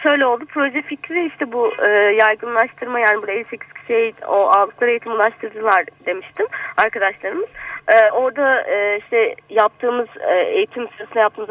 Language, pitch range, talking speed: Turkish, 190-265 Hz, 140 wpm